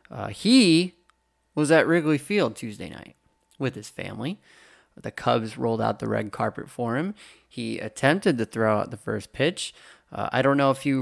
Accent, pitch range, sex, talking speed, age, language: American, 120-145 Hz, male, 185 wpm, 20-39, English